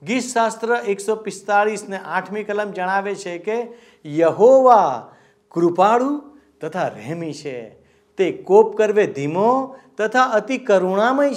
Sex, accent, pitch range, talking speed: male, native, 180-235 Hz, 105 wpm